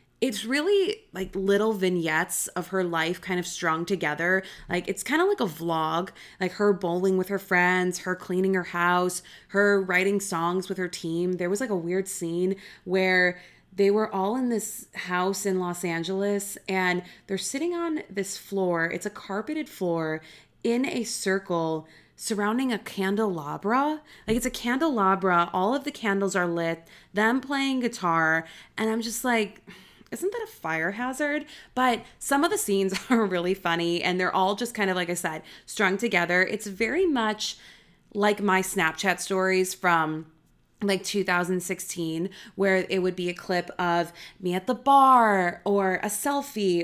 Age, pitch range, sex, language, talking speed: 20-39, 175-210 Hz, female, English, 170 wpm